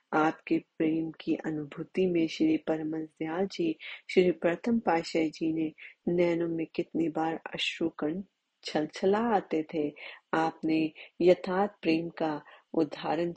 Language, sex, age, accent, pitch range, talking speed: Hindi, female, 30-49, native, 155-190 Hz, 110 wpm